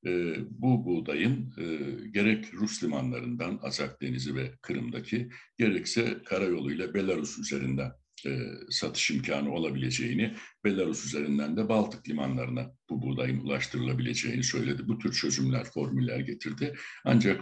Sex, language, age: male, Turkish, 60-79